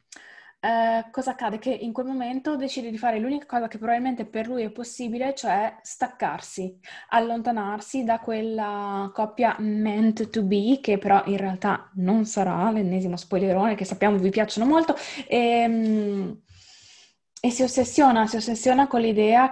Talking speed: 150 wpm